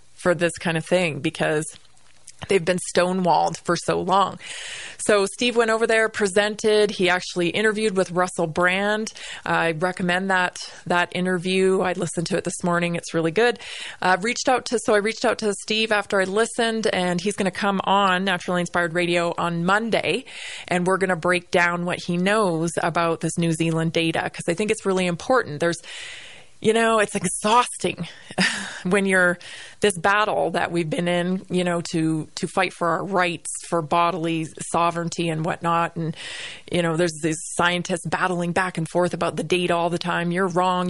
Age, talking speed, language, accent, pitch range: 20-39, 185 wpm, English, American, 170-200 Hz